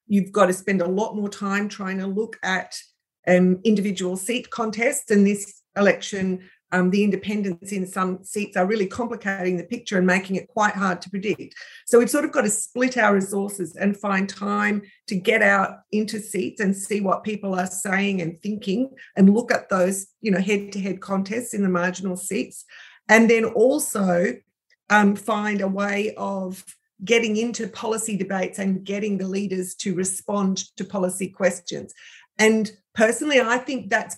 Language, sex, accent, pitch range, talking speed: English, female, Australian, 190-220 Hz, 175 wpm